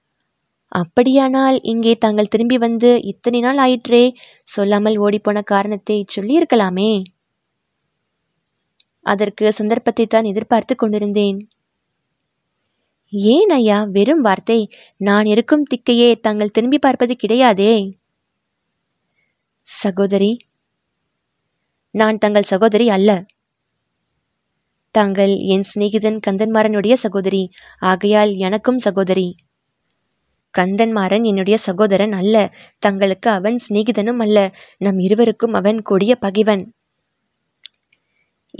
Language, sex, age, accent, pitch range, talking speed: Tamil, female, 20-39, native, 200-230 Hz, 80 wpm